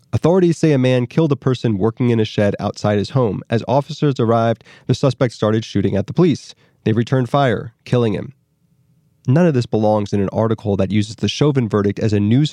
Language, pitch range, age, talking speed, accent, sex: English, 110-150 Hz, 30-49, 210 wpm, American, male